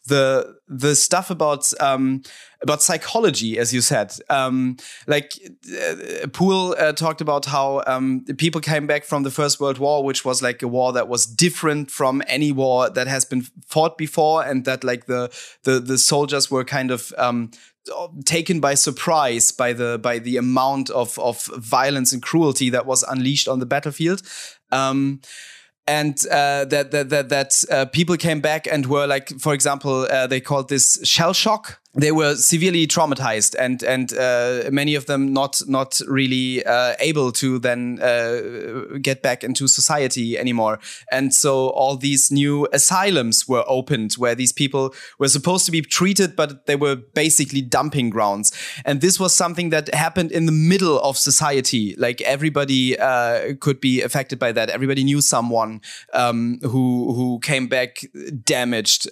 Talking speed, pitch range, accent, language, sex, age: 170 wpm, 130-150 Hz, German, English, male, 20-39